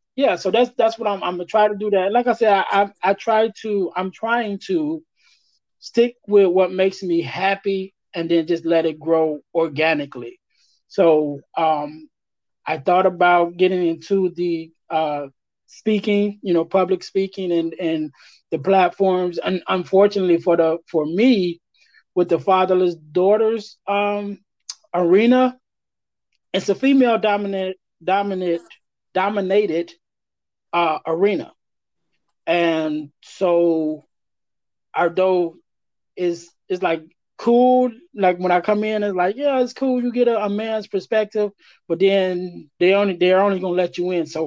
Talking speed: 145 wpm